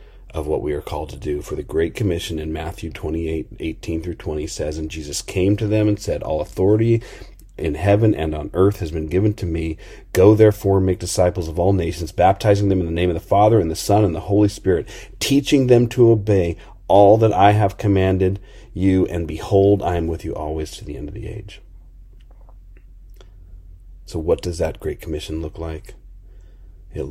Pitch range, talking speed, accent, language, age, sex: 80-100 Hz, 200 wpm, American, English, 40-59, male